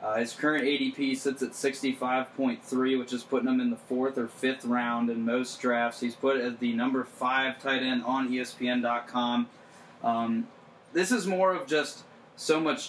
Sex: male